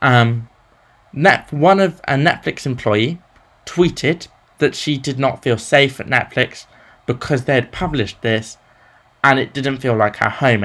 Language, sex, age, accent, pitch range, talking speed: English, male, 20-39, British, 115-140 Hz, 160 wpm